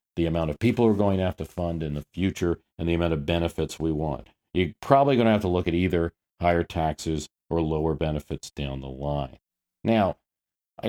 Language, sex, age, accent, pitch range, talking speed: English, male, 50-69, American, 80-100 Hz, 215 wpm